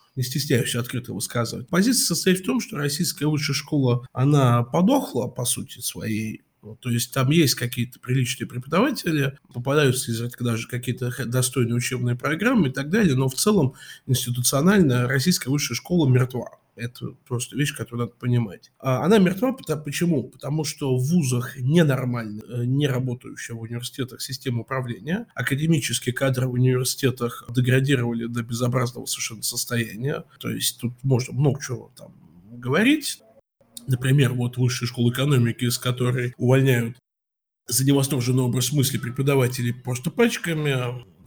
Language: Russian